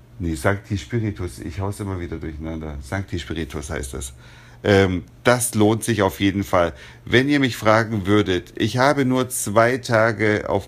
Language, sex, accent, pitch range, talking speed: German, male, German, 95-120 Hz, 170 wpm